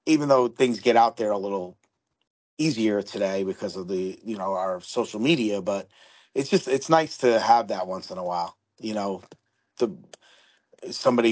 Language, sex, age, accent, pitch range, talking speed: English, male, 30-49, American, 110-135 Hz, 175 wpm